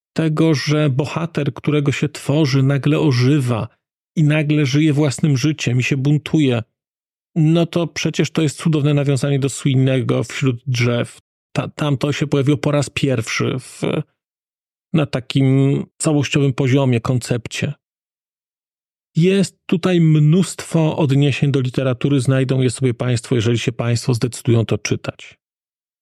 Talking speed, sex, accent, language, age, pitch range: 130 wpm, male, native, Polish, 40-59, 130-160 Hz